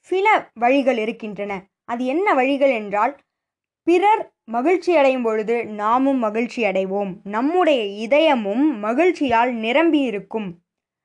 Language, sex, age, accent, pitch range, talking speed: Tamil, female, 20-39, native, 215-305 Hz, 90 wpm